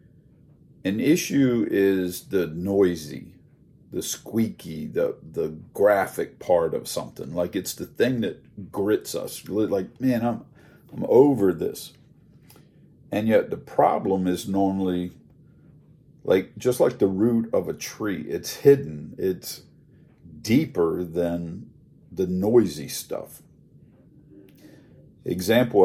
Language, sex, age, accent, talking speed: English, male, 50-69, American, 115 wpm